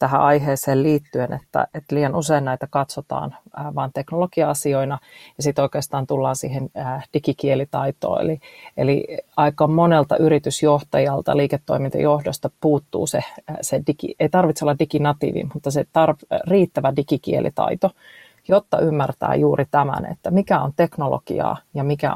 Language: Finnish